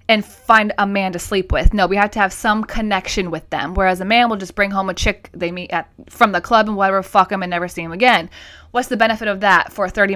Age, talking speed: 20-39, 280 wpm